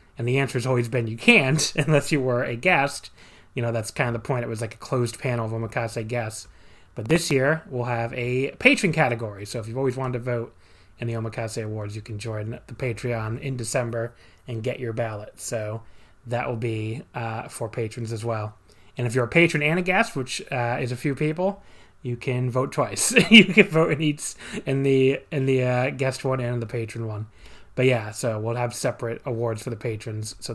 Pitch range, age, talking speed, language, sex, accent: 115-140 Hz, 20-39, 220 wpm, English, male, American